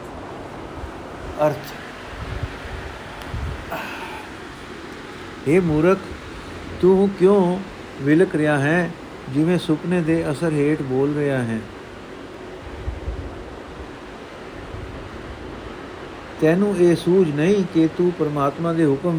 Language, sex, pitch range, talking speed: Punjabi, male, 130-165 Hz, 80 wpm